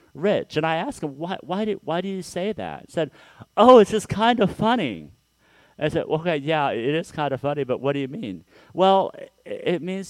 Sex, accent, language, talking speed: male, American, English, 230 wpm